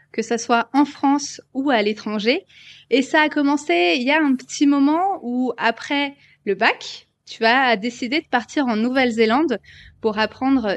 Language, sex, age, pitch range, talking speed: French, female, 20-39, 225-290 Hz, 175 wpm